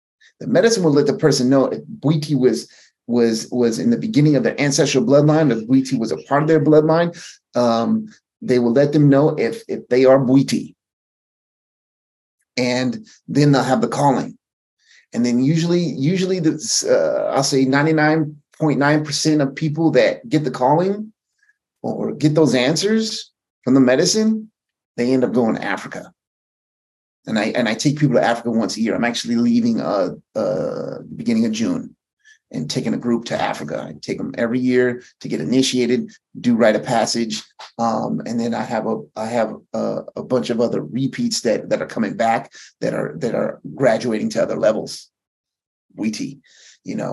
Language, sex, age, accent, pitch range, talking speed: English, male, 30-49, American, 125-215 Hz, 180 wpm